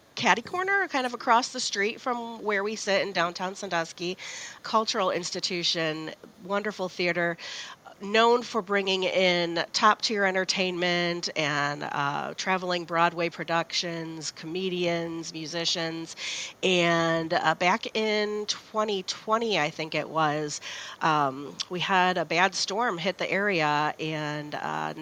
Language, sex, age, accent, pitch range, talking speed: English, female, 40-59, American, 160-200 Hz, 120 wpm